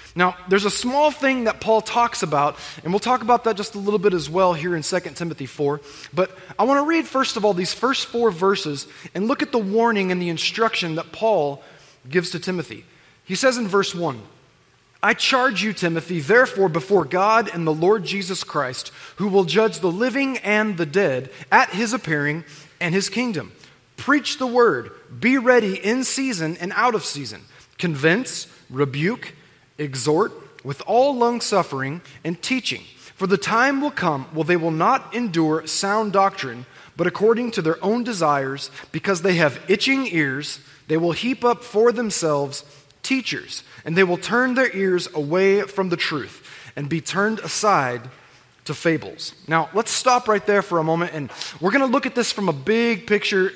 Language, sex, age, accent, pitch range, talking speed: English, male, 20-39, American, 155-225 Hz, 185 wpm